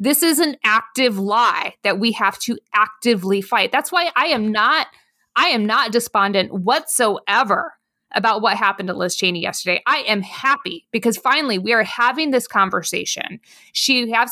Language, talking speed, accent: English, 170 wpm, American